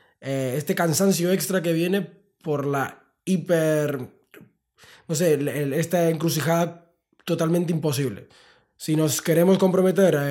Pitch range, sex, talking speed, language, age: 130-165 Hz, male, 105 wpm, Spanish, 20-39